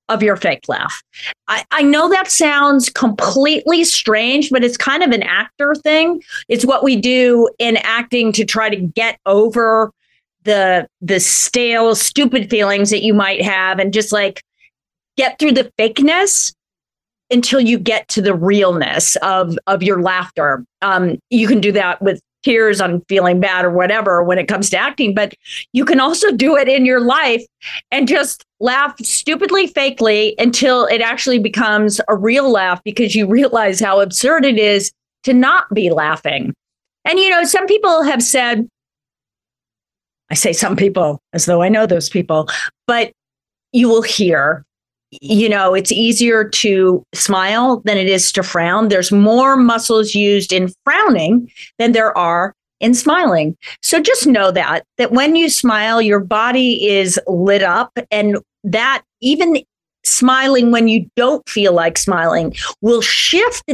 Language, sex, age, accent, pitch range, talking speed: English, female, 30-49, American, 195-260 Hz, 160 wpm